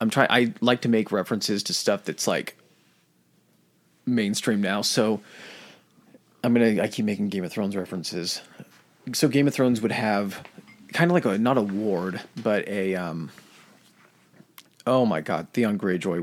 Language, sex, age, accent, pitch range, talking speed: English, male, 30-49, American, 100-120 Hz, 165 wpm